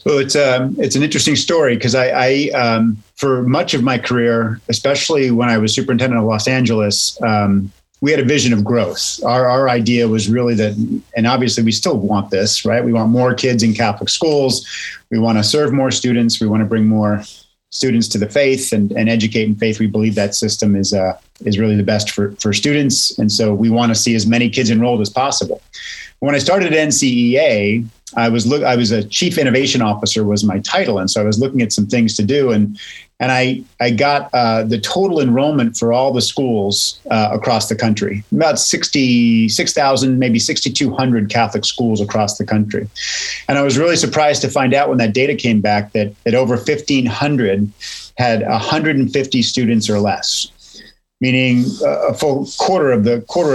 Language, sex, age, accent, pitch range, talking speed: English, male, 40-59, American, 105-130 Hz, 210 wpm